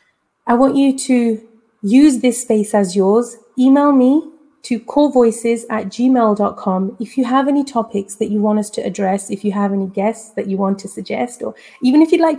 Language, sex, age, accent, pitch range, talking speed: English, female, 30-49, British, 200-245 Hz, 200 wpm